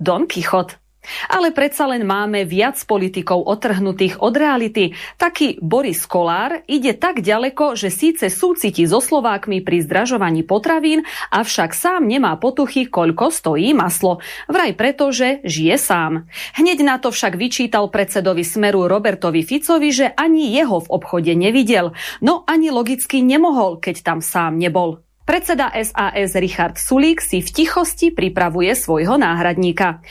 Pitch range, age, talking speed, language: 180-285 Hz, 30-49, 140 wpm, Slovak